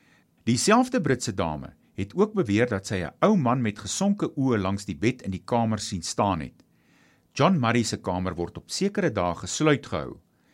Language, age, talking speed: English, 50-69, 180 wpm